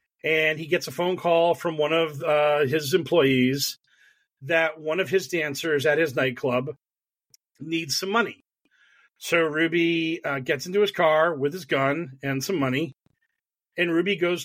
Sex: male